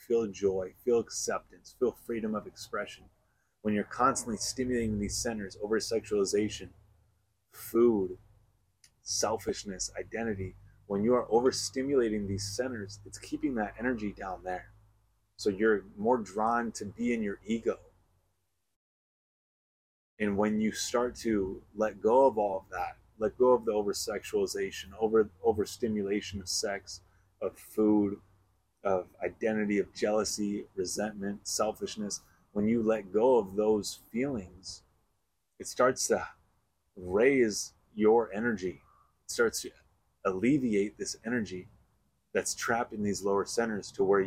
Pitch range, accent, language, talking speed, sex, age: 95-115 Hz, American, English, 125 wpm, male, 30-49